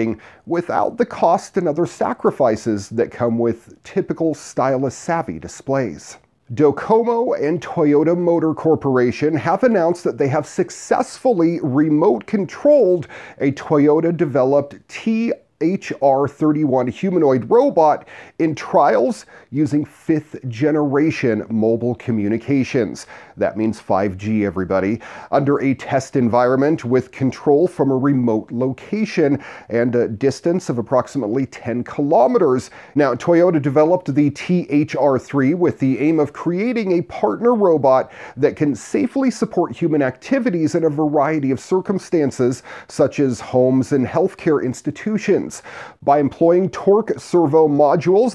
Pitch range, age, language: 125-165 Hz, 40-59, English